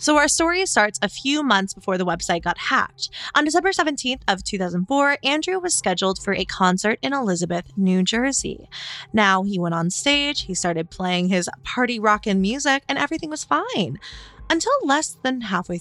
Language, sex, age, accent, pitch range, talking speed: English, female, 20-39, American, 180-280 Hz, 180 wpm